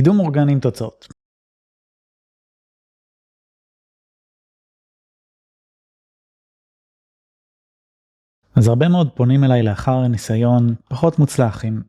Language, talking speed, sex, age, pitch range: Hebrew, 70 wpm, male, 20-39, 115-140 Hz